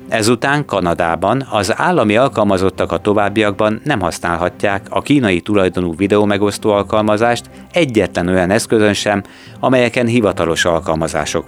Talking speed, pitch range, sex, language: 110 wpm, 95-115 Hz, male, Hungarian